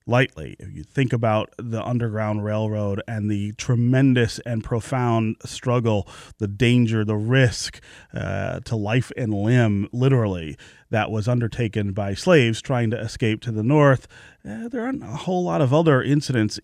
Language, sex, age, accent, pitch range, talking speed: English, male, 30-49, American, 105-135 Hz, 160 wpm